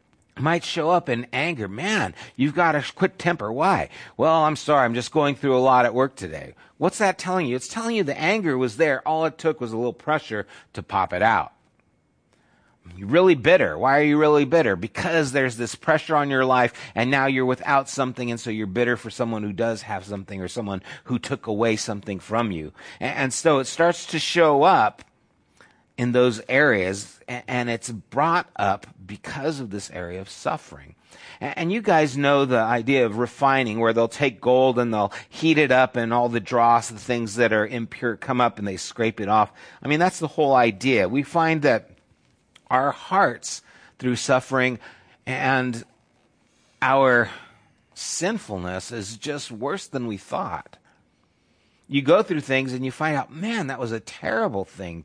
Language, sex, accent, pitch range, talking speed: English, male, American, 115-145 Hz, 190 wpm